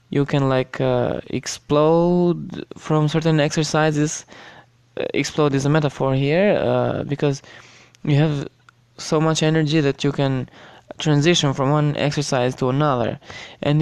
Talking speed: 130 wpm